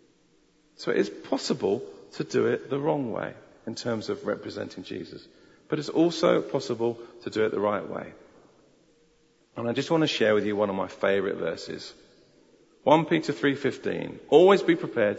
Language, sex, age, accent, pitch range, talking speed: English, male, 40-59, British, 115-160 Hz, 175 wpm